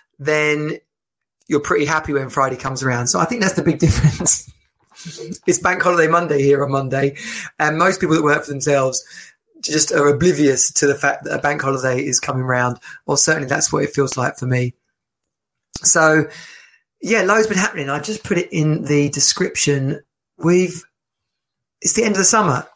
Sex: male